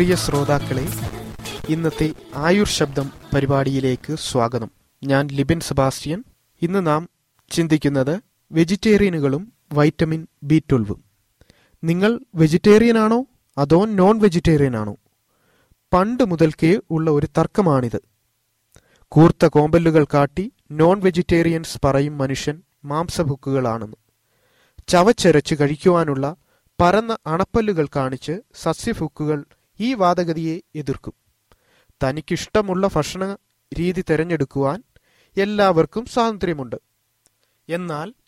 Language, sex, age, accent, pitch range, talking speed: Malayalam, male, 30-49, native, 135-175 Hz, 70 wpm